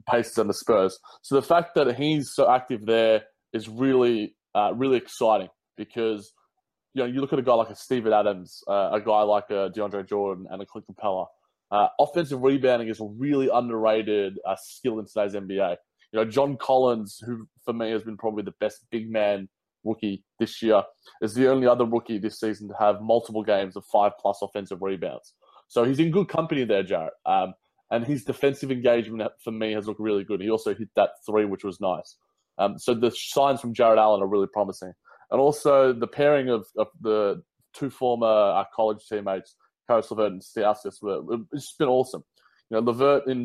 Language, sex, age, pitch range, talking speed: English, male, 20-39, 105-125 Hz, 200 wpm